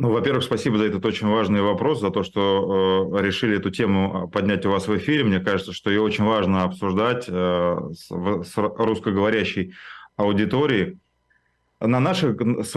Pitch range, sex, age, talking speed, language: 95-115 Hz, male, 20-39, 165 wpm, Russian